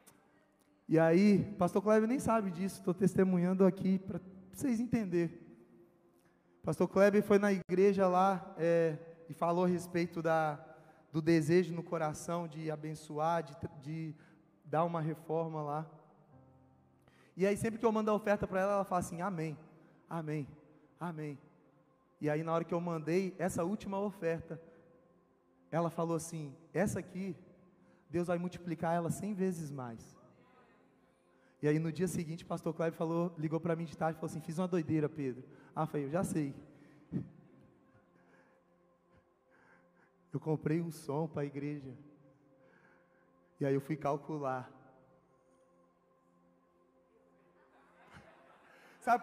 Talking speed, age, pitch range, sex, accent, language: 140 wpm, 20-39, 155-200 Hz, male, Brazilian, Portuguese